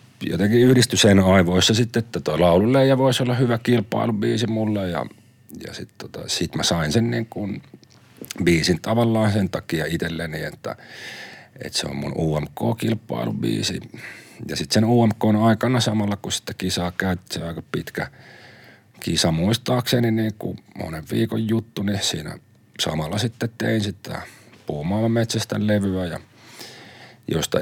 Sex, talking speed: male, 130 wpm